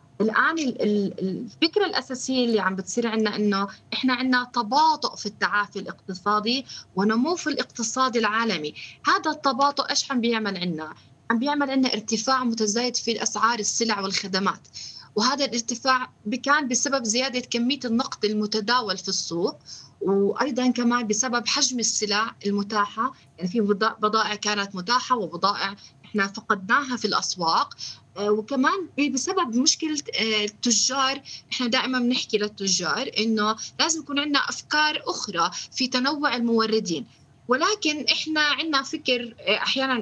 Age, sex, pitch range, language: 20-39, female, 210-255 Hz, Arabic